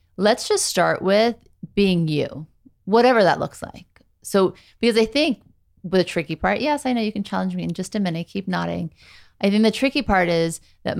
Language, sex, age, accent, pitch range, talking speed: English, female, 30-49, American, 155-190 Hz, 200 wpm